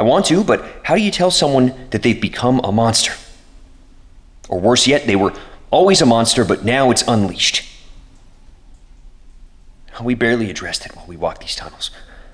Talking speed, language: 170 wpm, English